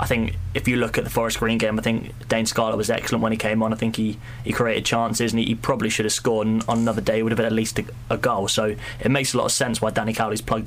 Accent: British